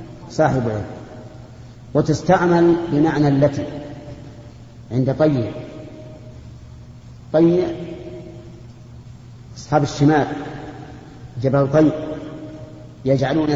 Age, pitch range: 50-69, 125-155 Hz